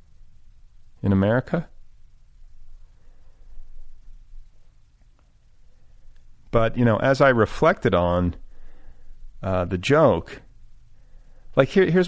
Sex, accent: male, American